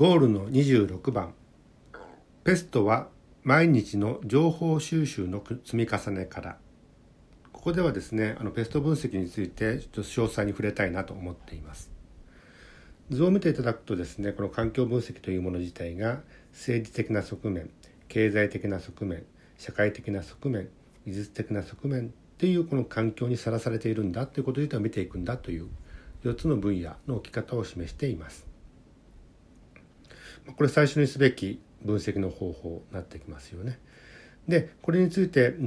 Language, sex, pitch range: Japanese, male, 95-130 Hz